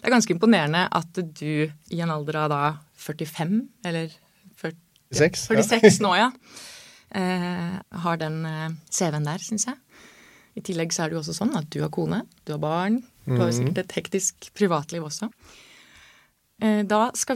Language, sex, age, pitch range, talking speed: English, female, 20-39, 160-210 Hz, 160 wpm